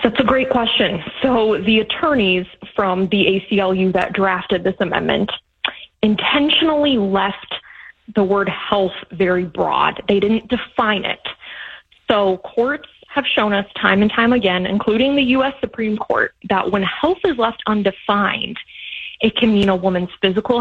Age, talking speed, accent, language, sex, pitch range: 20-39, 150 wpm, American, English, female, 195-240 Hz